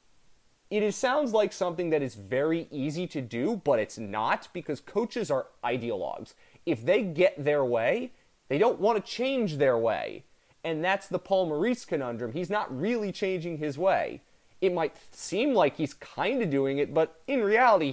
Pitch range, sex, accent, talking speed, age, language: 135-185 Hz, male, American, 175 wpm, 30-49, English